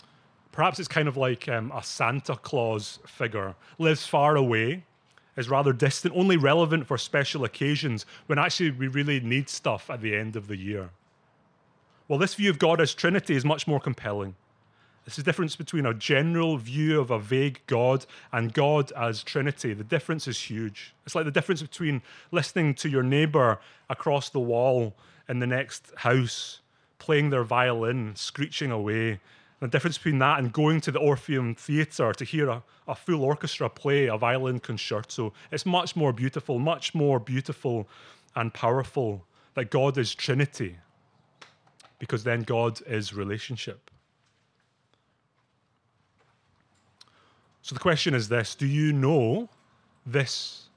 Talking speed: 155 wpm